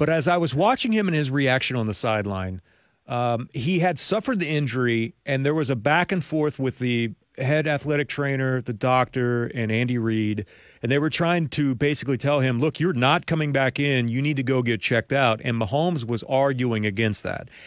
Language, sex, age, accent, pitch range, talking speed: English, male, 40-59, American, 130-170 Hz, 210 wpm